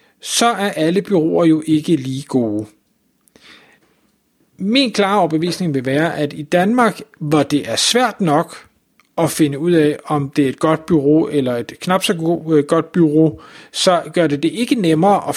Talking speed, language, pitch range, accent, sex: 170 wpm, Danish, 150-180 Hz, native, male